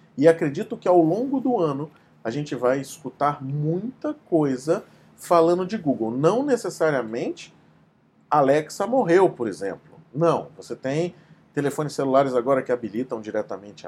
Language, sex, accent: Portuguese, male, Brazilian